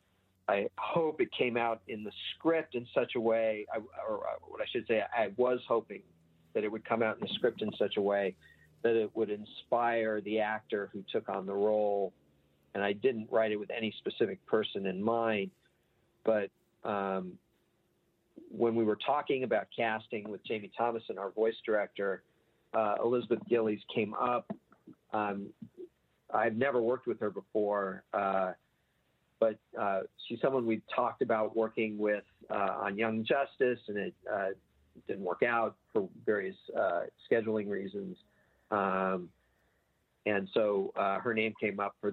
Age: 50-69